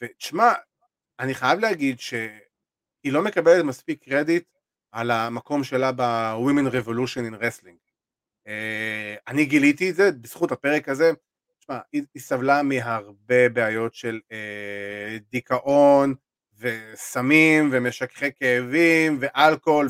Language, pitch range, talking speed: Hebrew, 120-145 Hz, 105 wpm